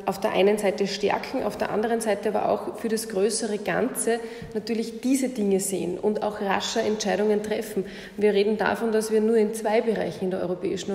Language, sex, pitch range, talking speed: German, female, 195-225 Hz, 195 wpm